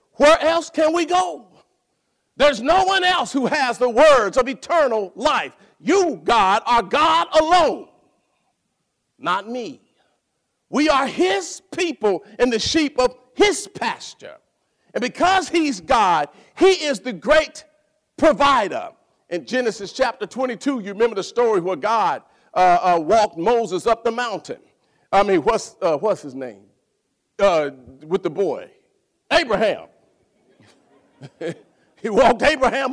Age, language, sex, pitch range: 50-69, English, male, 225-310 Hz